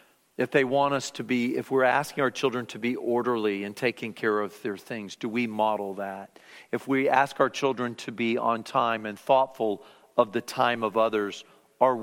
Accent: American